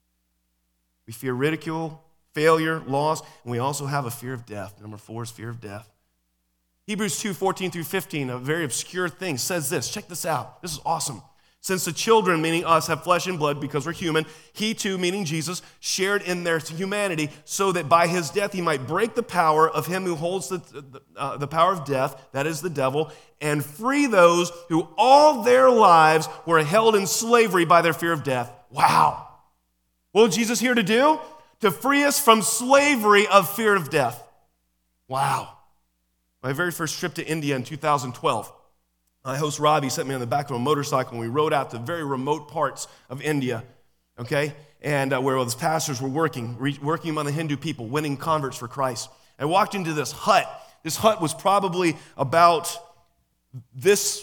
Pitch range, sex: 135-185 Hz, male